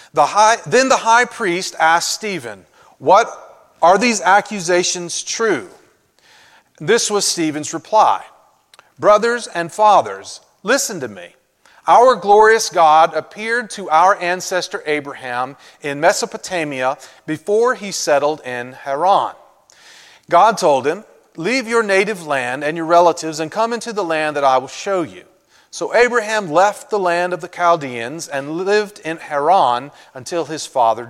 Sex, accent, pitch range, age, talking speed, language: male, American, 150-210 Hz, 40-59, 135 wpm, English